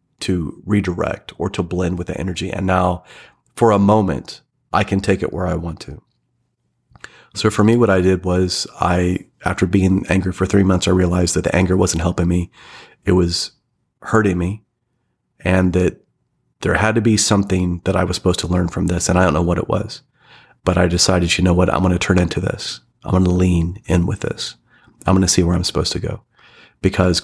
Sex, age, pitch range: male, 40-59, 90-100 Hz